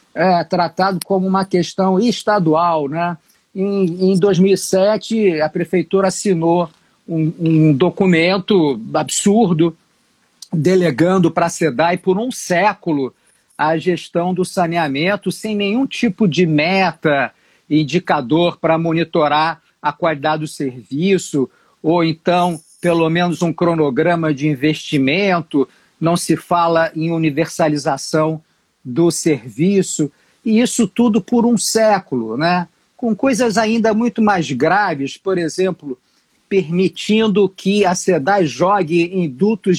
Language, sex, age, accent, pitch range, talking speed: Portuguese, male, 50-69, Brazilian, 160-195 Hz, 115 wpm